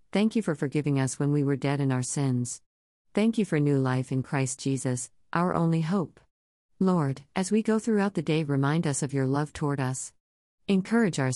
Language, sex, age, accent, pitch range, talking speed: English, female, 50-69, American, 130-160 Hz, 205 wpm